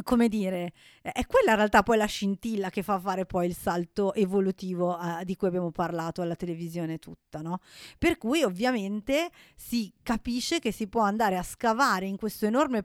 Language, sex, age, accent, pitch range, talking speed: Italian, female, 30-49, native, 185-225 Hz, 180 wpm